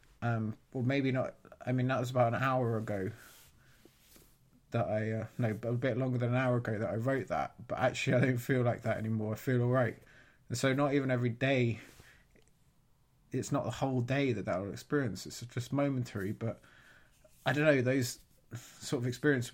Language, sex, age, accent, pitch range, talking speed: English, male, 20-39, British, 120-135 Hz, 195 wpm